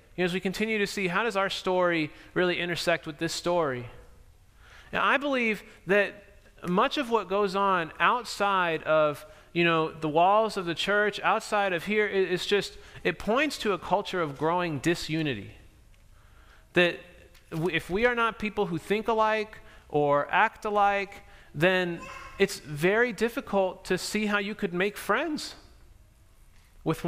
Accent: American